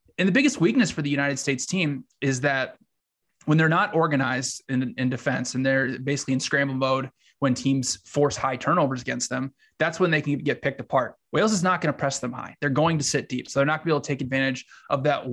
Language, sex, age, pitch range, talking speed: English, male, 20-39, 130-155 Hz, 245 wpm